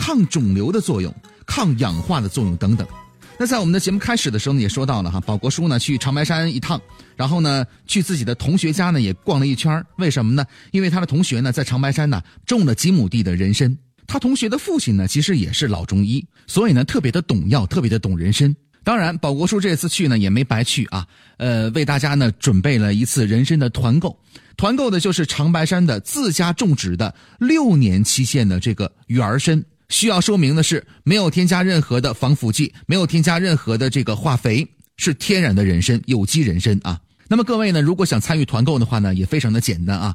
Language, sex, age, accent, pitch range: Chinese, male, 30-49, native, 115-185 Hz